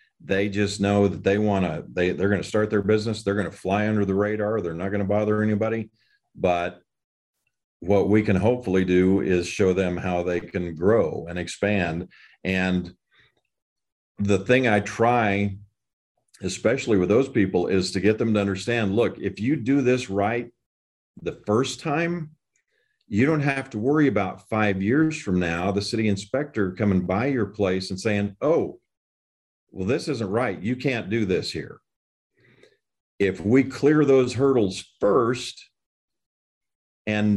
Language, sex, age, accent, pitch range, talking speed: English, male, 50-69, American, 90-120 Hz, 160 wpm